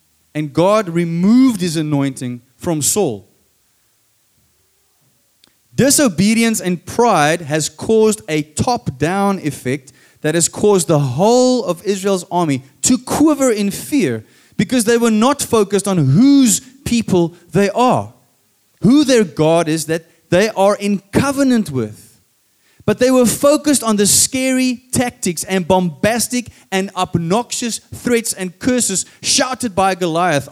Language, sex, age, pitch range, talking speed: English, male, 20-39, 140-225 Hz, 130 wpm